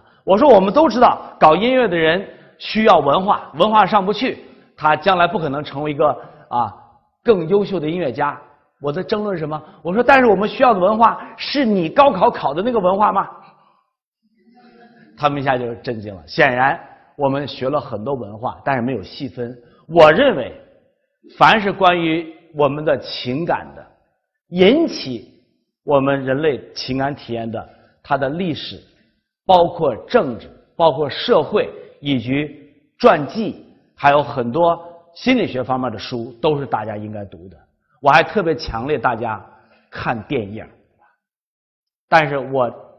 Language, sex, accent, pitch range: Chinese, male, native, 125-205 Hz